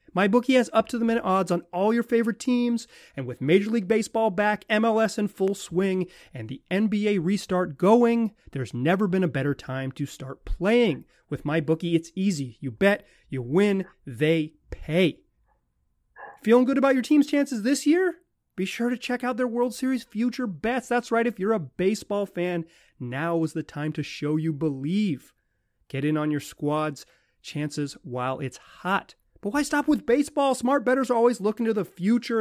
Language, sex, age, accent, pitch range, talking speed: English, male, 30-49, American, 155-235 Hz, 185 wpm